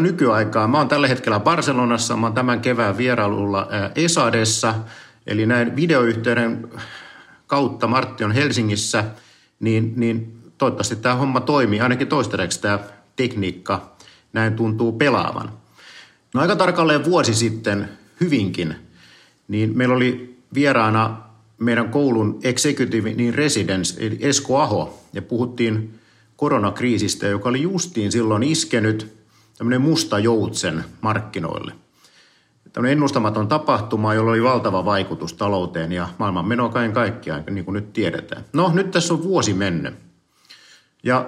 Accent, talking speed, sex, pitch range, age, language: native, 120 wpm, male, 105-125 Hz, 50-69, Finnish